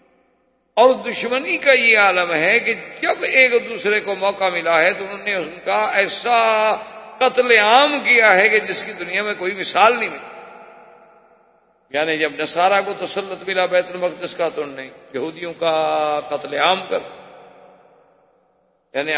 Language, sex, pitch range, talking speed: Urdu, male, 150-225 Hz, 160 wpm